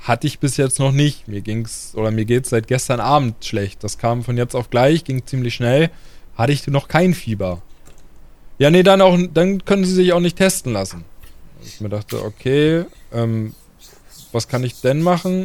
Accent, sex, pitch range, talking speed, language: German, male, 115-145 Hz, 200 wpm, German